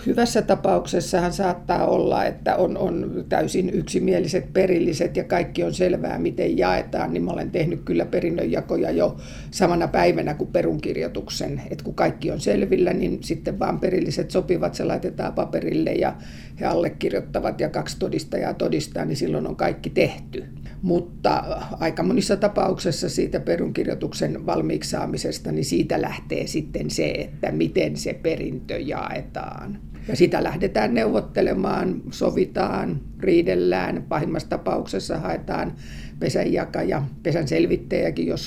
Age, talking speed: 50-69, 130 wpm